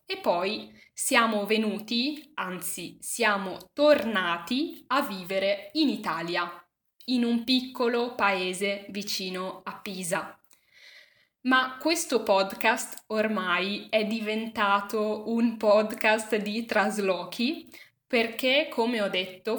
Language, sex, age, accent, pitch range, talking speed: Italian, female, 10-29, native, 195-245 Hz, 100 wpm